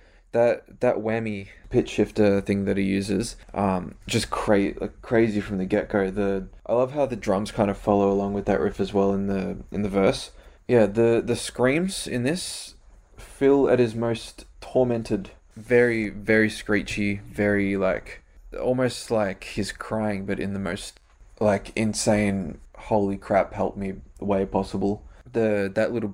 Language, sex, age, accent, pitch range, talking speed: English, male, 20-39, Australian, 100-115 Hz, 170 wpm